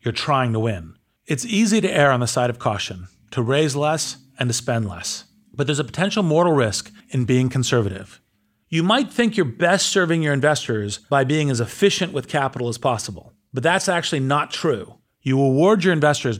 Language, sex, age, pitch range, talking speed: English, male, 40-59, 120-165 Hz, 200 wpm